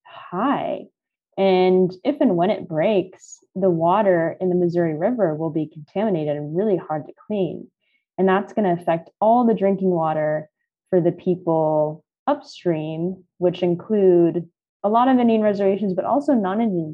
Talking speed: 155 wpm